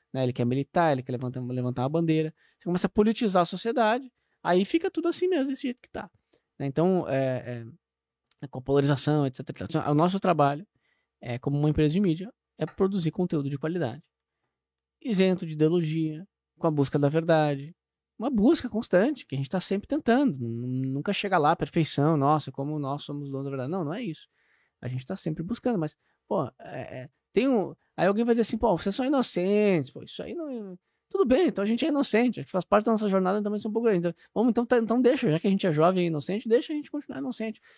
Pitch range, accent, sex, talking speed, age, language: 150-220 Hz, Brazilian, male, 215 wpm, 20-39, Portuguese